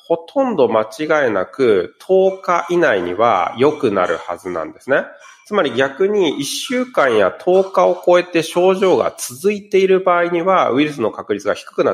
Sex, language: male, Japanese